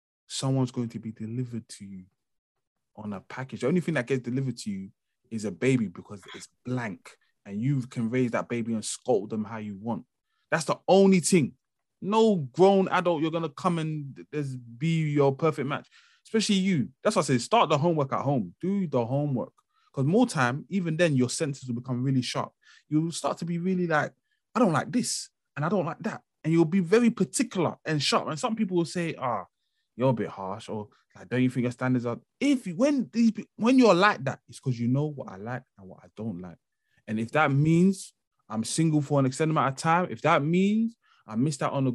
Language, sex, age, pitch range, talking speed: English, male, 20-39, 120-175 Hz, 225 wpm